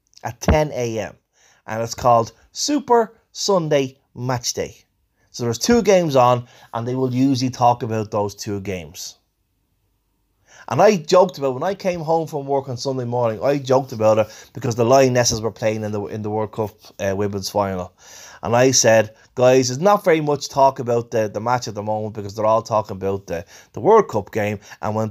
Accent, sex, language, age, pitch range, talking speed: Irish, male, English, 20-39, 110-150 Hz, 200 wpm